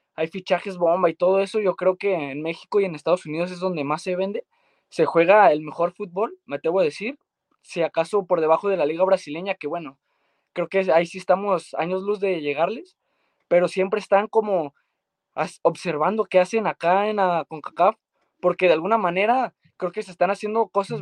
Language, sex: Spanish, male